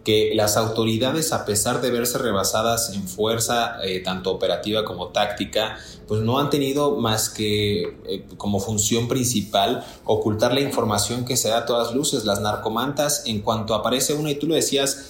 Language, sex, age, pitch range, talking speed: Spanish, male, 30-49, 110-140 Hz, 175 wpm